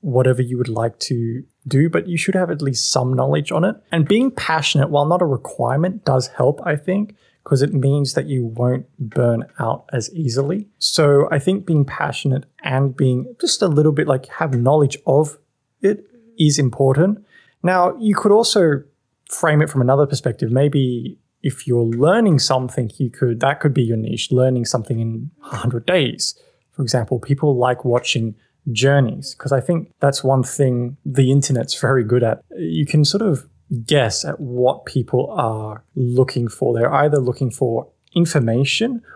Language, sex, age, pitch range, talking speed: English, male, 20-39, 120-150 Hz, 175 wpm